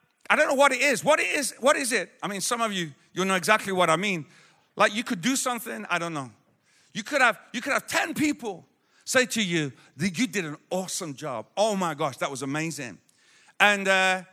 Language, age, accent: English, 40-59, British